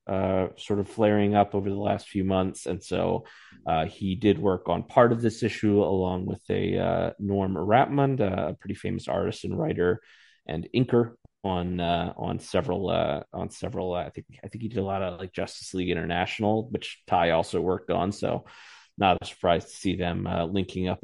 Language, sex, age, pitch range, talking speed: English, male, 30-49, 95-120 Hz, 205 wpm